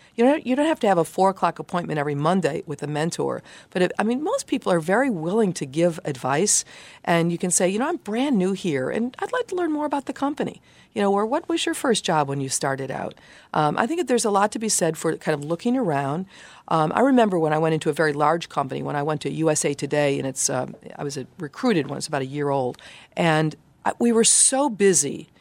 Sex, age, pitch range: female, 50-69, 145-200 Hz